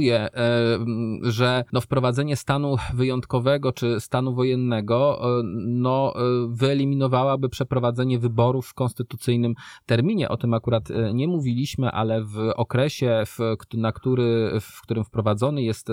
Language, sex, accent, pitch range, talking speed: Polish, male, native, 105-125 Hz, 100 wpm